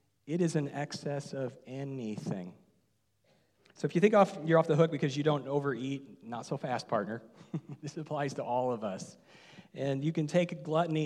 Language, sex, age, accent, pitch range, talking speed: English, male, 40-59, American, 135-170 Hz, 180 wpm